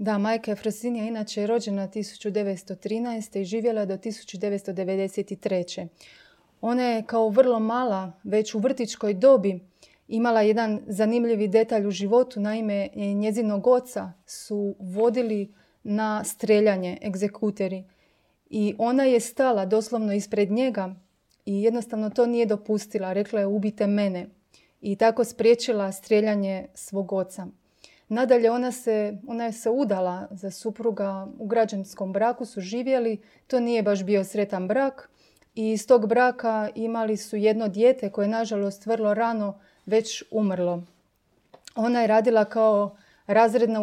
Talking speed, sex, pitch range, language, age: 130 wpm, female, 200-230 Hz, Croatian, 30-49